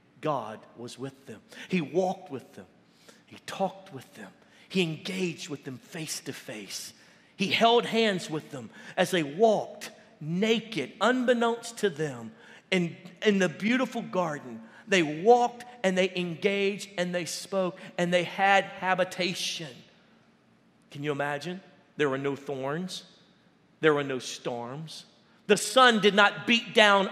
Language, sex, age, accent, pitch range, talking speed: English, male, 50-69, American, 170-225 Hz, 145 wpm